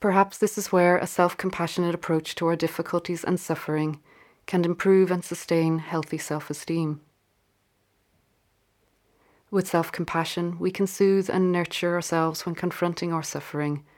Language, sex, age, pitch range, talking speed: English, female, 30-49, 150-180 Hz, 130 wpm